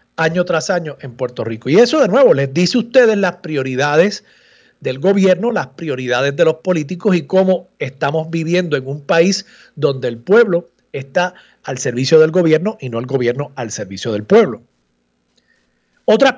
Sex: male